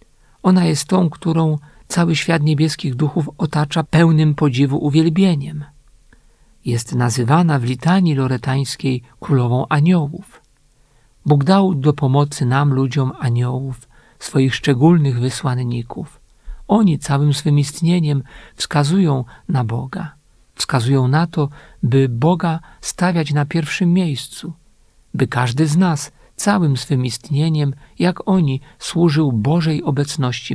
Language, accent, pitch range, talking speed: Polish, native, 135-160 Hz, 110 wpm